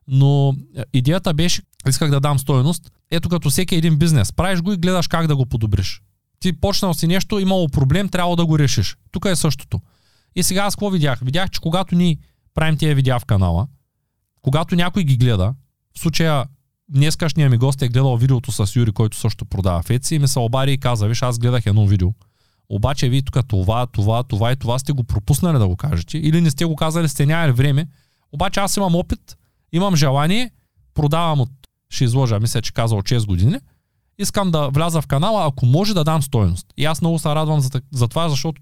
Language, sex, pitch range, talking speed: Bulgarian, male, 125-175 Hz, 205 wpm